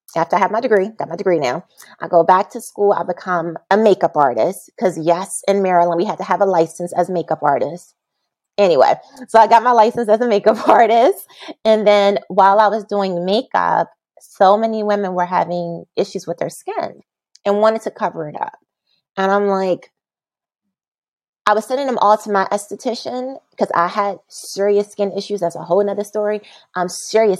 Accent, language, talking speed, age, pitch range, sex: American, English, 195 wpm, 30-49, 175-220 Hz, female